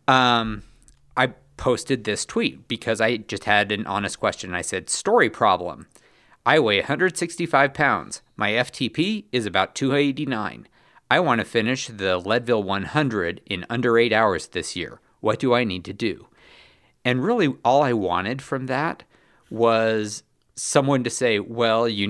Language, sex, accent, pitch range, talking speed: English, male, American, 100-125 Hz, 155 wpm